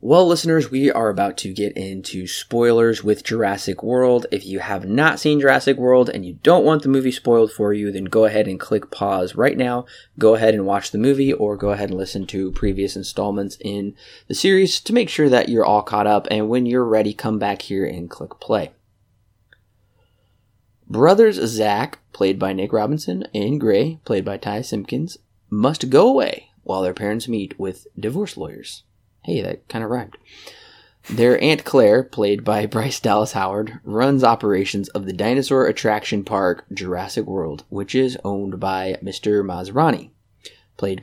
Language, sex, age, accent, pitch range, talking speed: English, male, 20-39, American, 100-125 Hz, 180 wpm